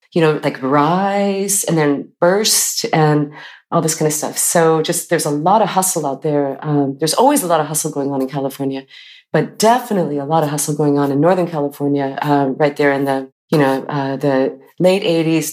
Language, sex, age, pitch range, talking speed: English, female, 30-49, 145-170 Hz, 215 wpm